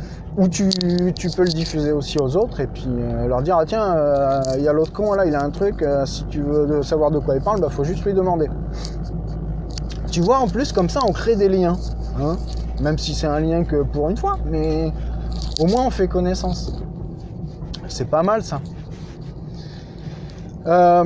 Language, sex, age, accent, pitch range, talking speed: French, male, 20-39, French, 150-190 Hz, 210 wpm